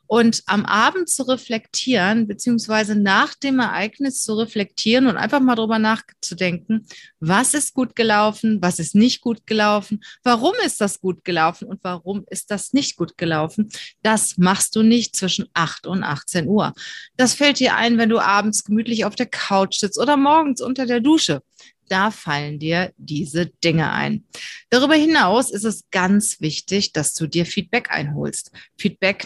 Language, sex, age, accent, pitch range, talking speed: German, female, 30-49, German, 175-230 Hz, 165 wpm